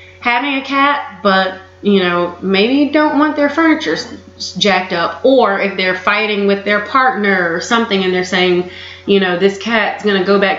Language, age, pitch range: English, 30-49, 175-210 Hz